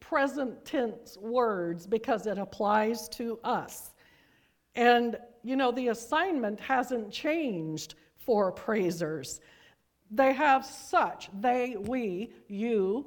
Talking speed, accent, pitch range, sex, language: 105 wpm, American, 195-260 Hz, female, English